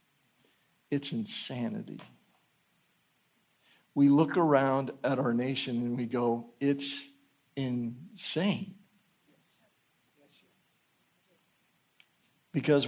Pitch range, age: 115-195 Hz, 50-69